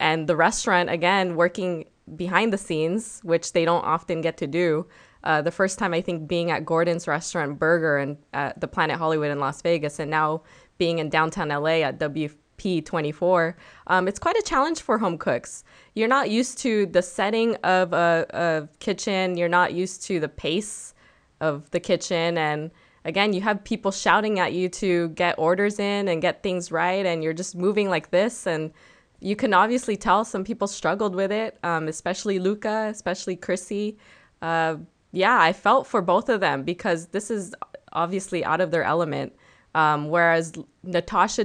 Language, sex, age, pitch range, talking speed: English, female, 20-39, 160-195 Hz, 180 wpm